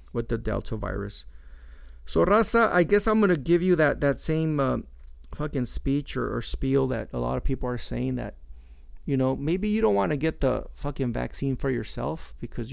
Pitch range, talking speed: 115-155 Hz, 210 wpm